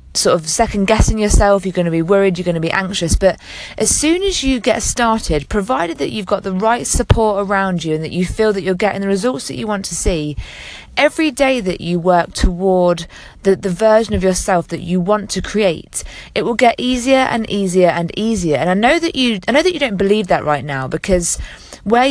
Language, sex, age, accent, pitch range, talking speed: English, female, 20-39, British, 175-230 Hz, 230 wpm